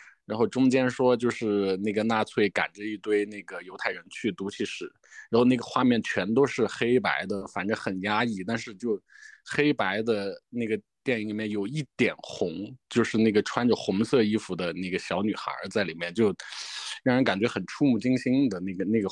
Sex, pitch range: male, 100-120 Hz